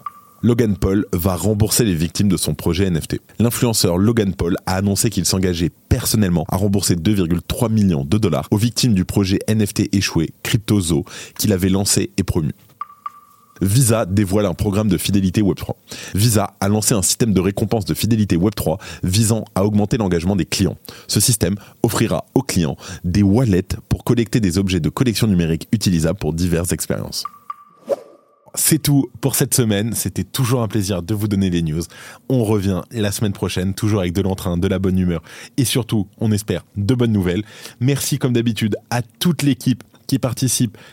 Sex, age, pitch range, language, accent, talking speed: male, 20-39, 95-120 Hz, French, French, 175 wpm